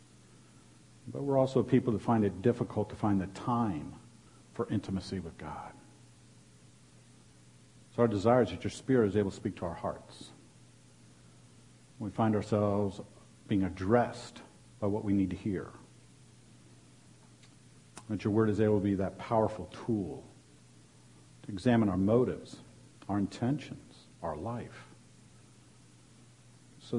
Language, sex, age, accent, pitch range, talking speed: English, male, 50-69, American, 90-125 Hz, 135 wpm